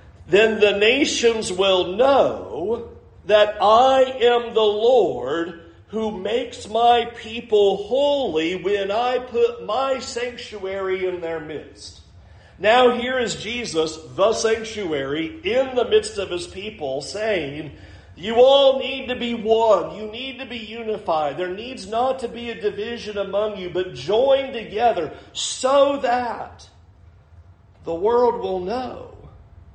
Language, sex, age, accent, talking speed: English, male, 50-69, American, 130 wpm